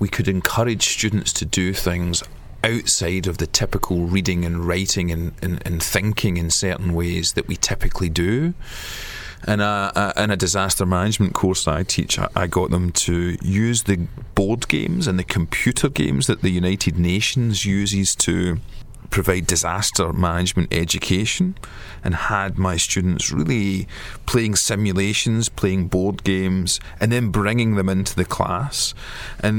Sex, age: male, 30-49